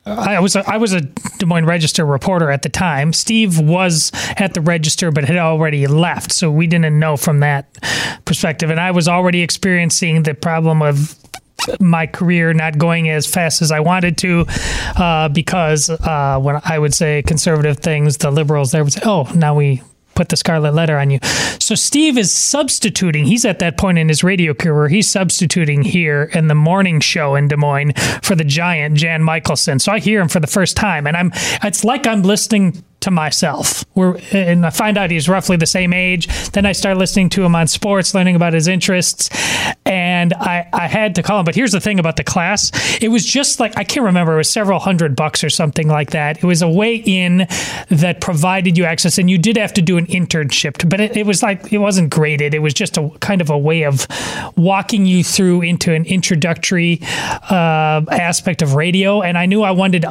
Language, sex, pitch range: English, male, 155-190 Hz